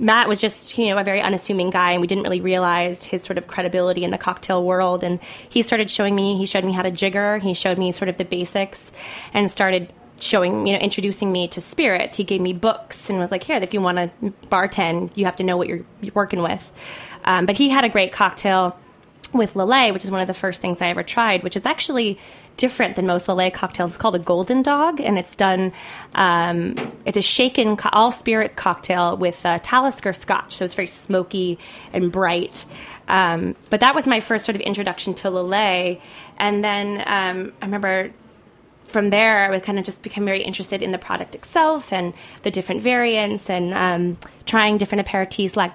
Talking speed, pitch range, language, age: 210 wpm, 180-205 Hz, English, 20-39